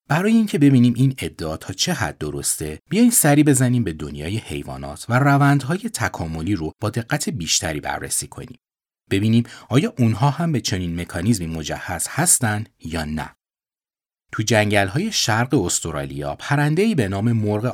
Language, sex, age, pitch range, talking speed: Persian, male, 30-49, 85-140 Hz, 145 wpm